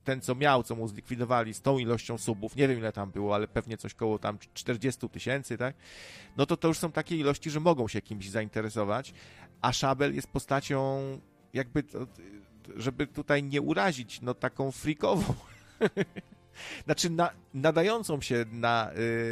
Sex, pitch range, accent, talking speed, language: male, 110-135 Hz, native, 170 wpm, Polish